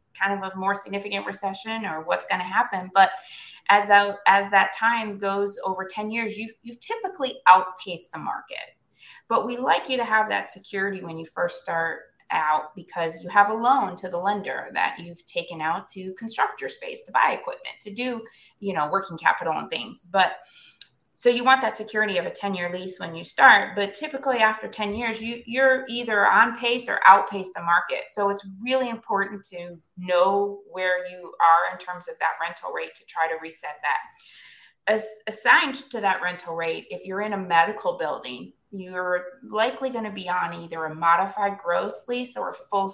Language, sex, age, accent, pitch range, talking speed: English, female, 20-39, American, 180-235 Hz, 195 wpm